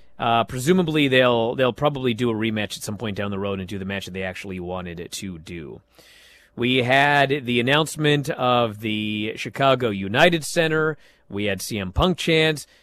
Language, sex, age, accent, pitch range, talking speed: English, male, 40-59, American, 120-160 Hz, 180 wpm